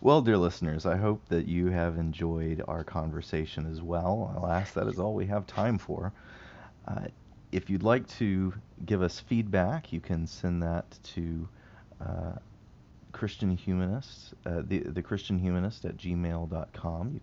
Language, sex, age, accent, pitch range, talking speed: English, male, 40-59, American, 80-100 Hz, 155 wpm